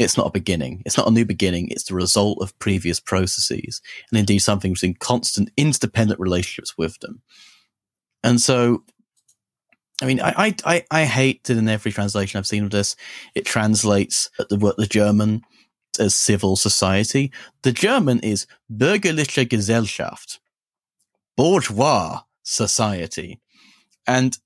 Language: English